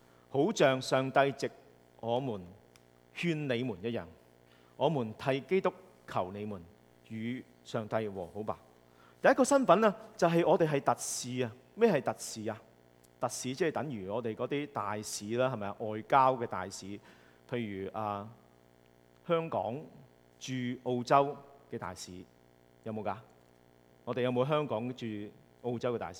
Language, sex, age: English, male, 40-59